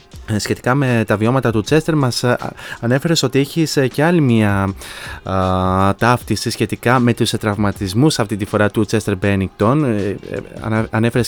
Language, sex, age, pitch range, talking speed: Greek, male, 20-39, 110-130 Hz, 135 wpm